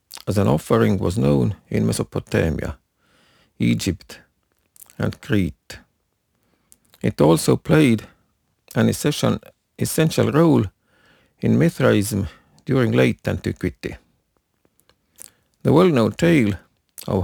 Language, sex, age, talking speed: English, male, 50-69, 85 wpm